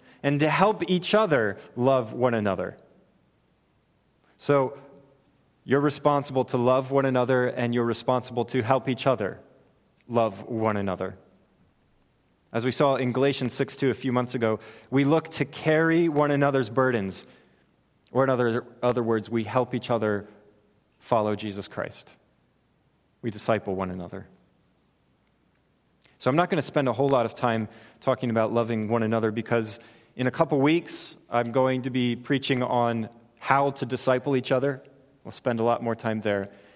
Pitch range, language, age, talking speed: 115-135 Hz, English, 30-49, 160 wpm